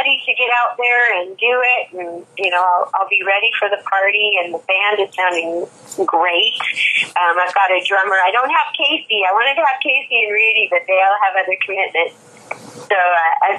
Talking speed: 210 wpm